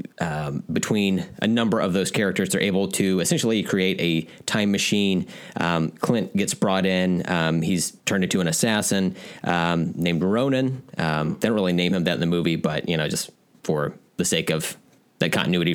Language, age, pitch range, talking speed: English, 30-49, 85-105 Hz, 185 wpm